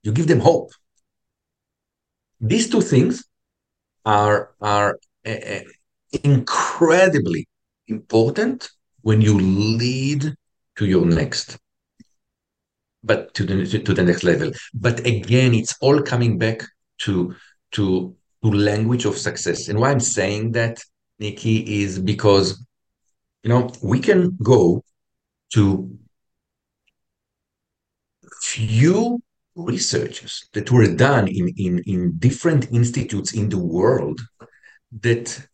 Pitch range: 105-150 Hz